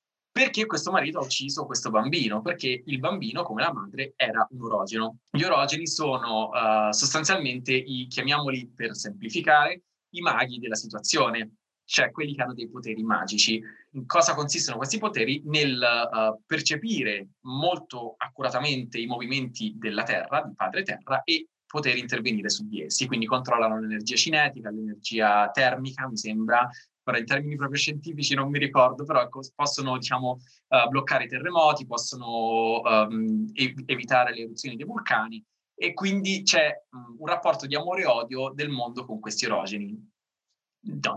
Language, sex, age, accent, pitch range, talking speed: Italian, male, 20-39, native, 115-160 Hz, 145 wpm